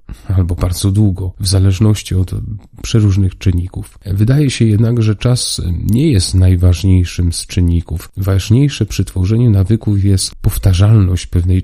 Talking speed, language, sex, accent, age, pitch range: 130 wpm, Polish, male, native, 40-59, 90-105 Hz